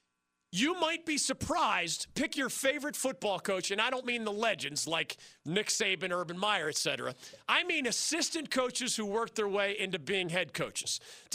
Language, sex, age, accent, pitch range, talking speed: English, male, 40-59, American, 195-255 Hz, 185 wpm